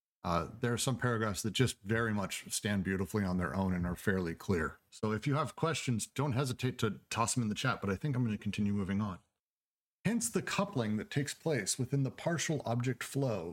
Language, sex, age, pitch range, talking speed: English, male, 40-59, 105-140 Hz, 225 wpm